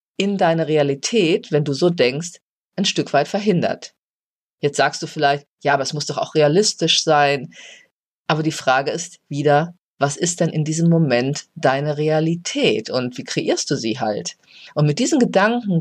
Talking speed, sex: 175 wpm, female